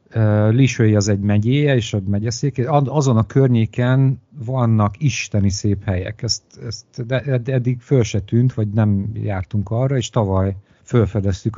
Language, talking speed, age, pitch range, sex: Hungarian, 145 wpm, 50-69, 105-130 Hz, male